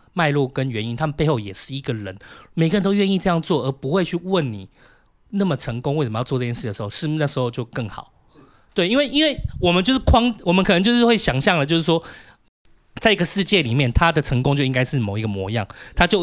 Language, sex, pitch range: Chinese, male, 125-175 Hz